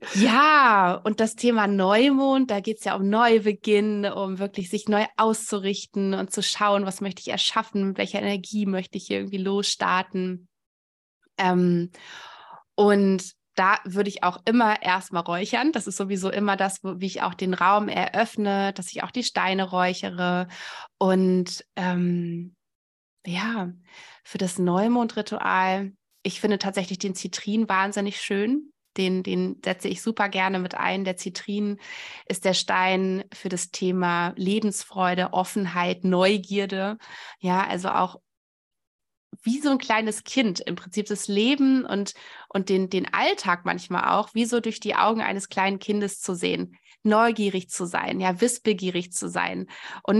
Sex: female